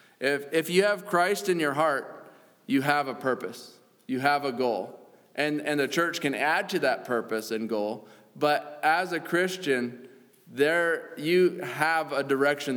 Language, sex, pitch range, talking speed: English, male, 135-170 Hz, 170 wpm